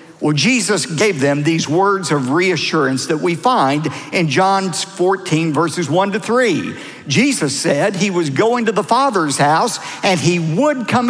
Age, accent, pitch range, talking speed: 50-69, American, 150-215 Hz, 170 wpm